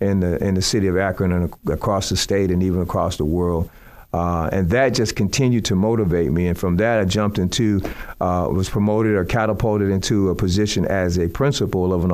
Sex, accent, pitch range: male, American, 90-105 Hz